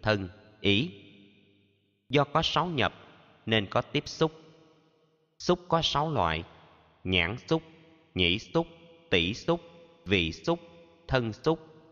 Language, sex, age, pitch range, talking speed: Vietnamese, male, 20-39, 100-155 Hz, 120 wpm